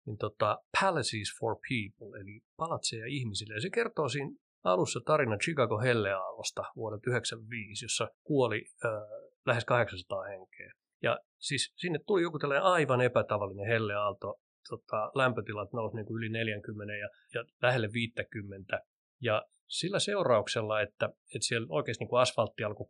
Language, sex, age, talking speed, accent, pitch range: Finnish, male, 30-49, 140 wpm, native, 105-130 Hz